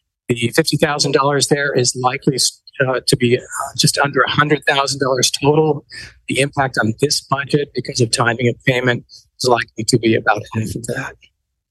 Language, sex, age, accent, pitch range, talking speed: English, male, 40-59, American, 120-145 Hz, 185 wpm